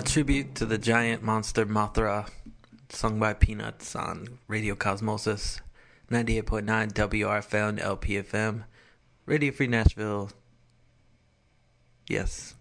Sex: male